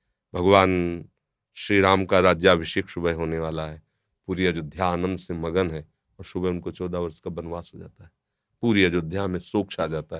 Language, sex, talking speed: Hindi, male, 175 wpm